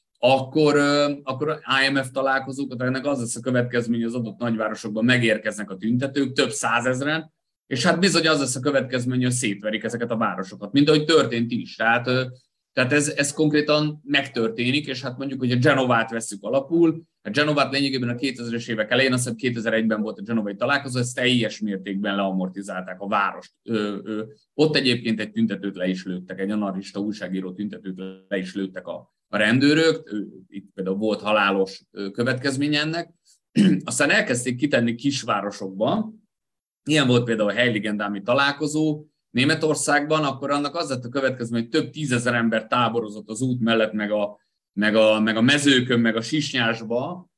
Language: Hungarian